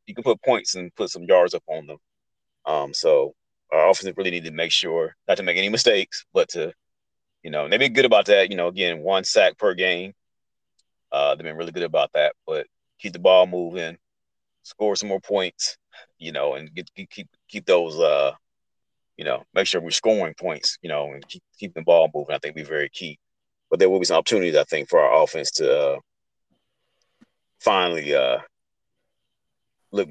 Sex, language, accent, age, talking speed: male, English, American, 30-49, 205 wpm